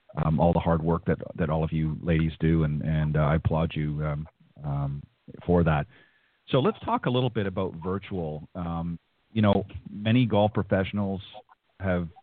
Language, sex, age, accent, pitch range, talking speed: English, male, 40-59, American, 90-105 Hz, 180 wpm